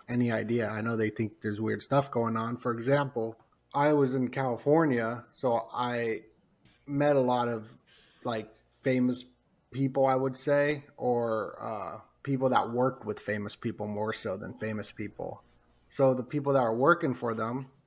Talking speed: 170 wpm